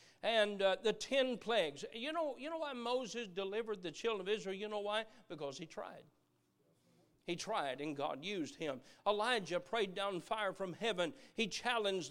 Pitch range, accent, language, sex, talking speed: 215-320 Hz, American, English, male, 175 wpm